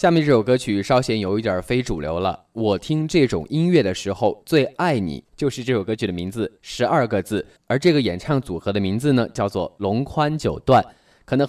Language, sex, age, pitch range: Chinese, male, 20-39, 100-135 Hz